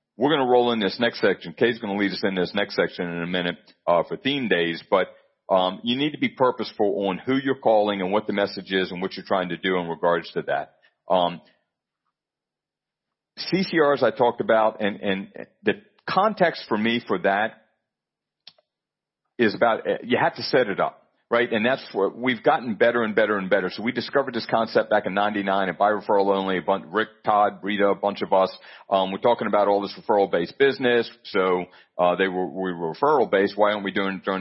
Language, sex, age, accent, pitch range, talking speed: English, male, 40-59, American, 95-115 Hz, 220 wpm